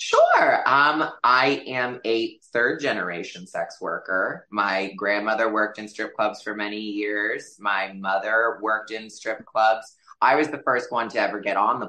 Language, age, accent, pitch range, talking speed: English, 20-39, American, 105-120 Hz, 165 wpm